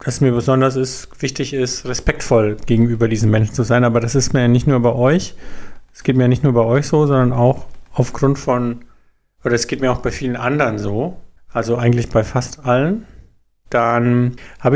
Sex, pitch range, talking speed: male, 120-150 Hz, 200 wpm